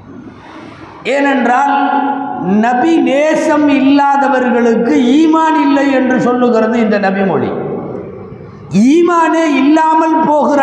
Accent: native